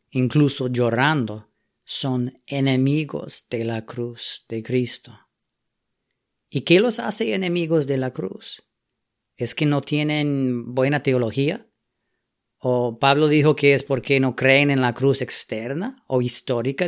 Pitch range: 120-145 Hz